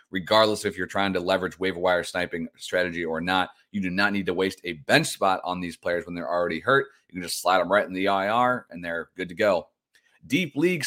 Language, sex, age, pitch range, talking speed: English, male, 30-49, 95-130 Hz, 245 wpm